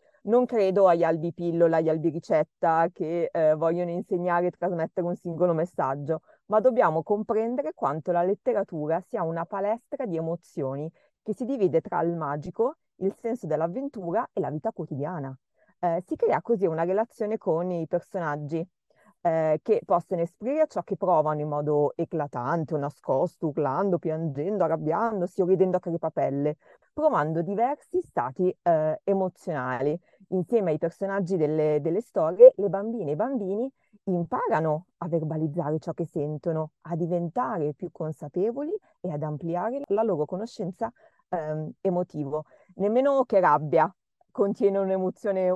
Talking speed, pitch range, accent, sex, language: 140 wpm, 165-210 Hz, native, female, Italian